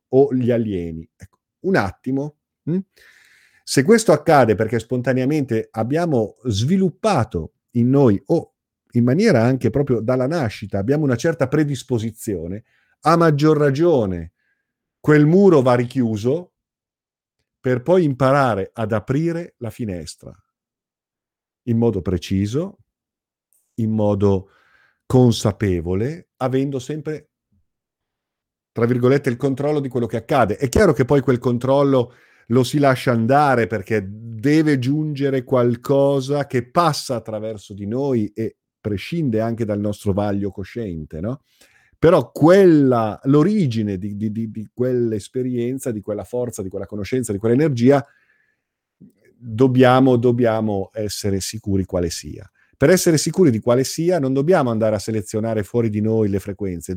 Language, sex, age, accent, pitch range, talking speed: Italian, male, 50-69, native, 110-140 Hz, 130 wpm